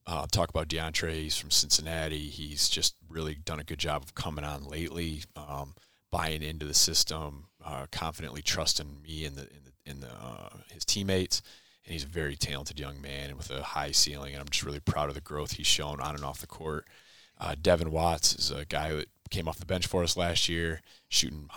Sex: male